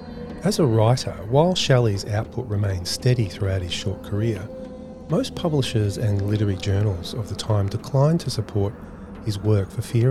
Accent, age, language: Australian, 30-49, English